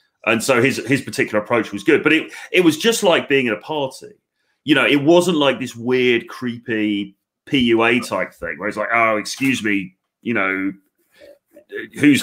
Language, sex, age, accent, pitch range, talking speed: English, male, 30-49, British, 105-145 Hz, 185 wpm